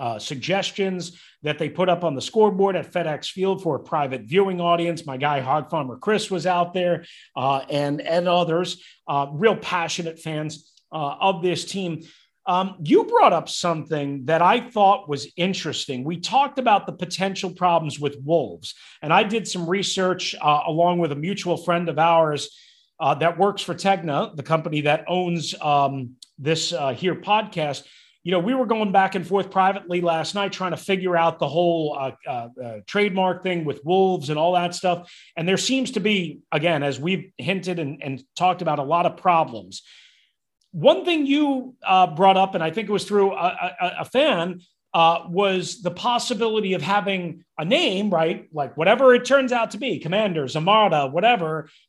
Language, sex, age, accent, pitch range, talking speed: English, male, 40-59, American, 155-195 Hz, 185 wpm